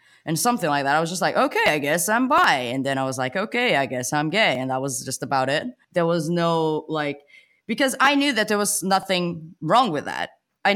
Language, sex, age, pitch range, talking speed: English, female, 20-39, 170-260 Hz, 245 wpm